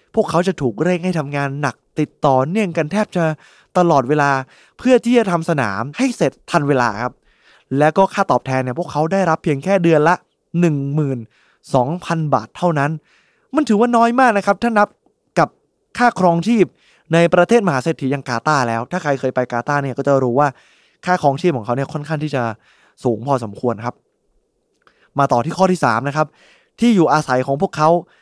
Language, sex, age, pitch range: Thai, male, 20-39, 140-190 Hz